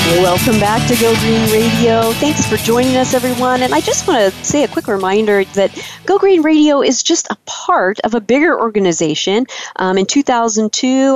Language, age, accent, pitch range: English, 40-59, American, 200-255 Hz